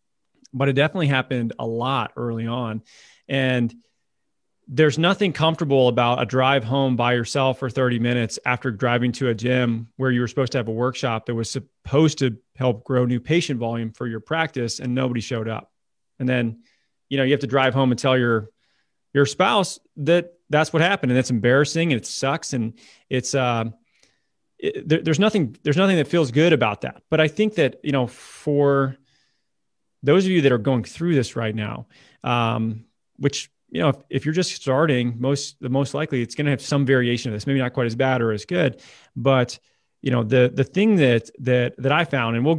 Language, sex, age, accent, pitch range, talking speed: English, male, 30-49, American, 120-145 Hz, 205 wpm